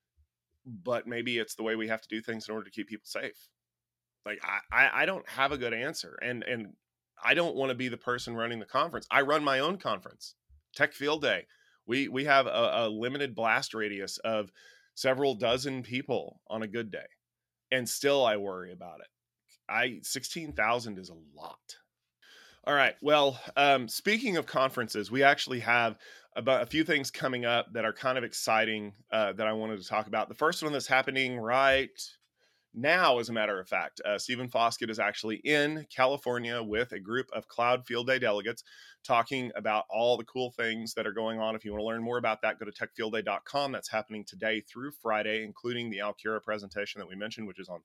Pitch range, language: 110-130 Hz, English